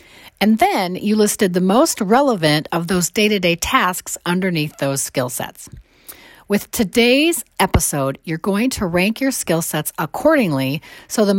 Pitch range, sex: 155-210 Hz, female